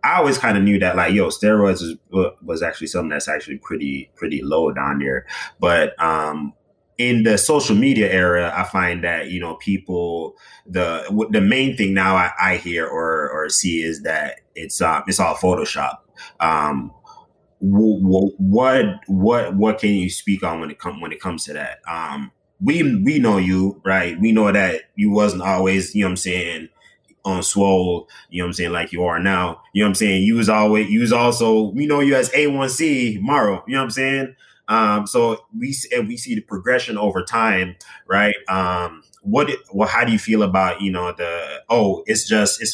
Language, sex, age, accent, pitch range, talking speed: English, male, 20-39, American, 90-110 Hz, 205 wpm